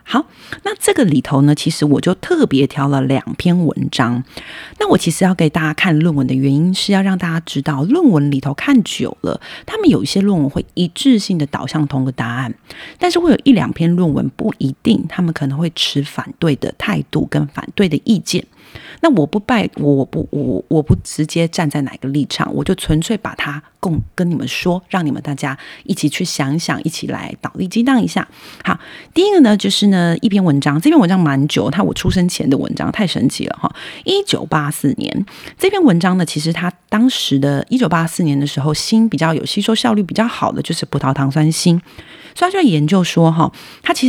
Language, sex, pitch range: Chinese, female, 145-195 Hz